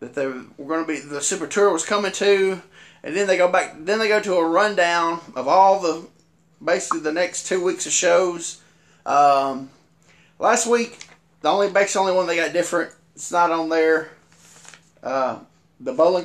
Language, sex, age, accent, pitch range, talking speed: English, male, 20-39, American, 140-180 Hz, 190 wpm